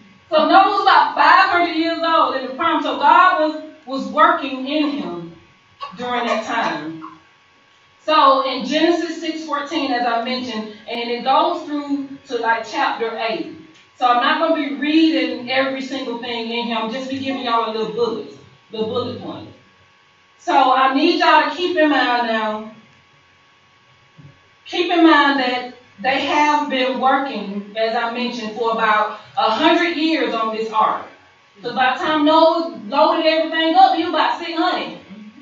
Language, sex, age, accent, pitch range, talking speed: English, female, 30-49, American, 245-320 Hz, 170 wpm